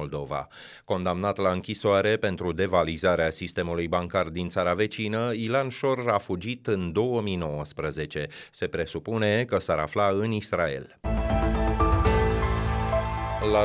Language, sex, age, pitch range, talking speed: Romanian, male, 30-49, 95-120 Hz, 110 wpm